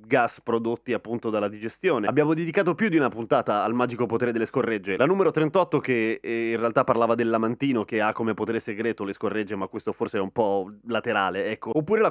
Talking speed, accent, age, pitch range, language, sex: 215 wpm, native, 30-49, 110-150 Hz, Italian, male